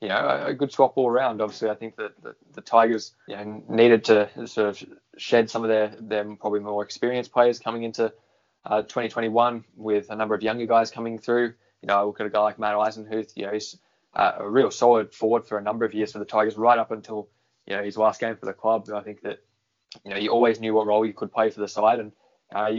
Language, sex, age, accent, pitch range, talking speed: English, male, 20-39, Australian, 105-115 Hz, 255 wpm